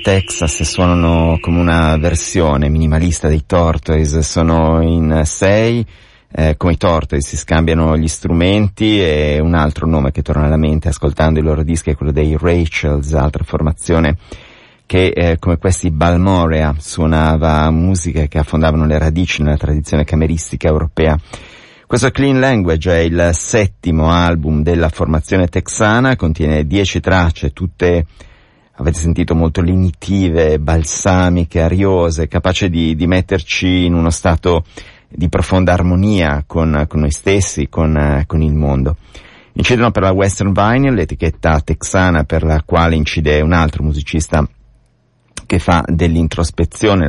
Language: Italian